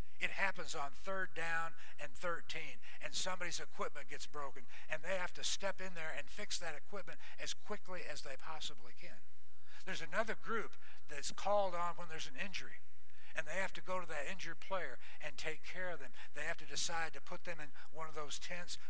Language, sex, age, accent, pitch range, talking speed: English, male, 60-79, American, 125-185 Hz, 205 wpm